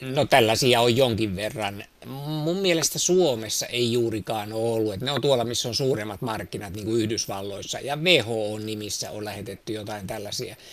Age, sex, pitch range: 50-69, male, 105-125 Hz